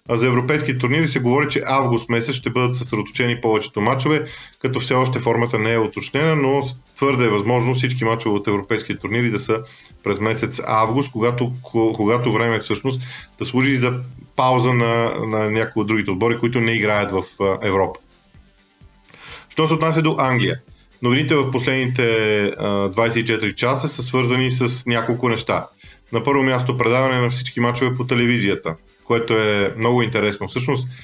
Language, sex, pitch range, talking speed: Bulgarian, male, 115-135 Hz, 160 wpm